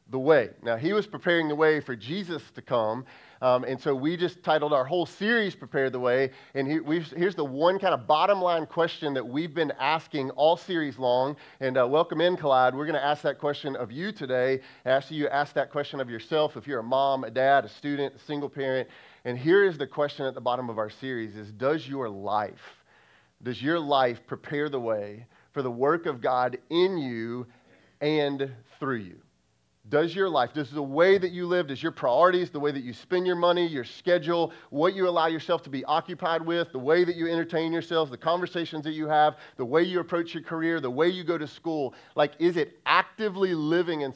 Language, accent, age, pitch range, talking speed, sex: English, American, 30-49, 135-170 Hz, 220 wpm, male